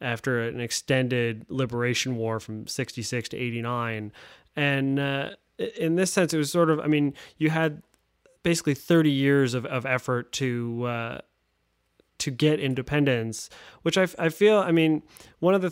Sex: male